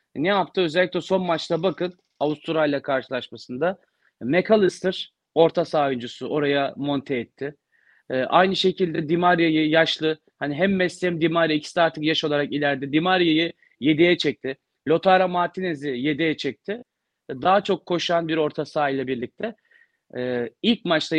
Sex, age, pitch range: male, 40-59, 145-185 Hz